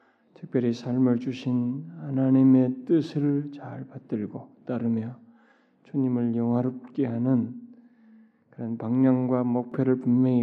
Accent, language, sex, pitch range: native, Korean, male, 120-145 Hz